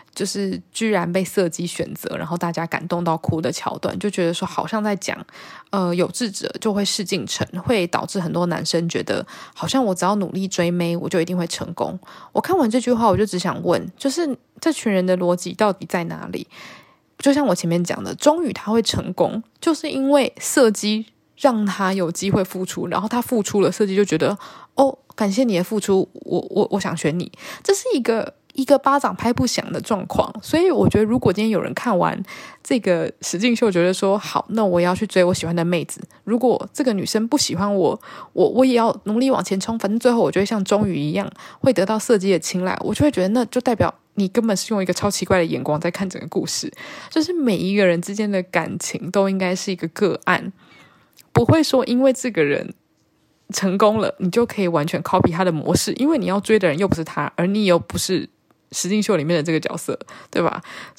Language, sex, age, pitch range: Chinese, female, 20-39, 175-235 Hz